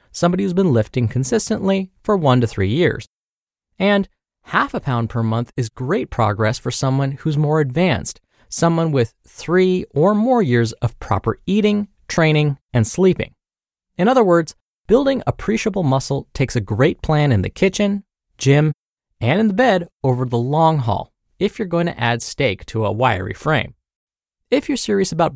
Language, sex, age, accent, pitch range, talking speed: English, male, 20-39, American, 115-185 Hz, 170 wpm